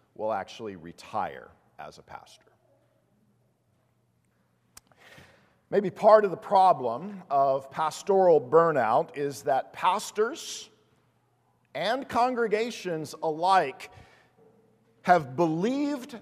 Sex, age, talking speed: male, 50-69, 80 wpm